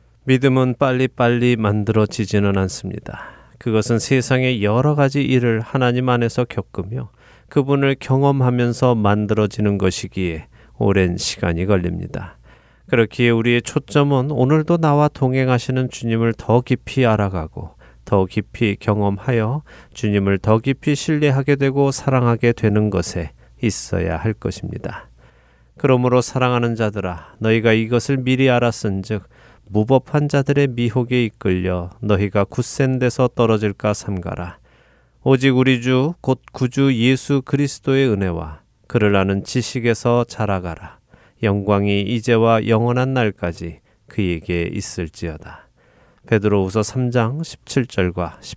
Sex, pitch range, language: male, 100-130 Hz, Korean